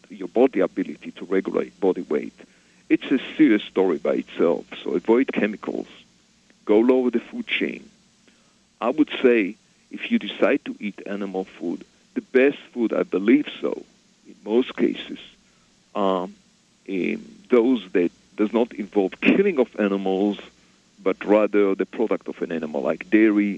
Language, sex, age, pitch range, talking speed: English, male, 50-69, 95-130 Hz, 150 wpm